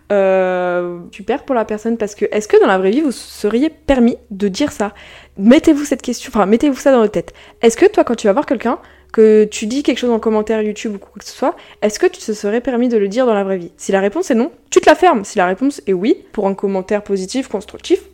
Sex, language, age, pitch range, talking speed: female, French, 20-39, 205-255 Hz, 270 wpm